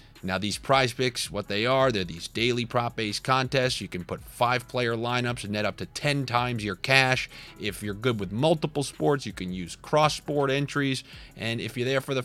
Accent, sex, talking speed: American, male, 215 wpm